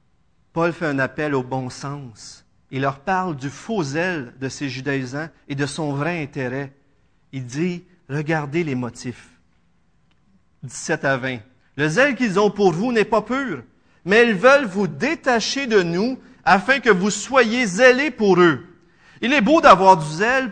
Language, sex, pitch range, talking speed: French, male, 145-215 Hz, 170 wpm